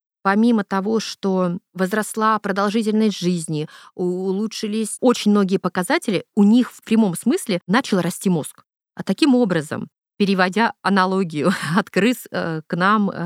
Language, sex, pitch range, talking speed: Russian, female, 175-220 Hz, 120 wpm